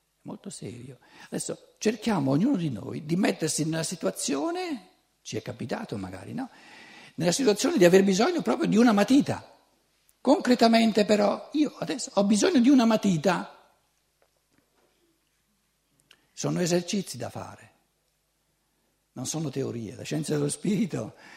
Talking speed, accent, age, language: 125 wpm, native, 60-79, Italian